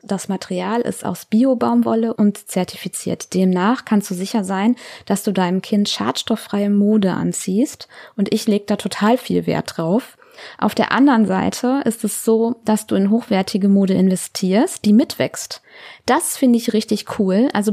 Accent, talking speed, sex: German, 165 wpm, female